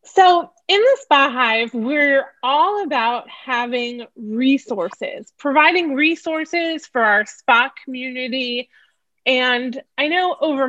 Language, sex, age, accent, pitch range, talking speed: English, female, 20-39, American, 230-285 Hz, 110 wpm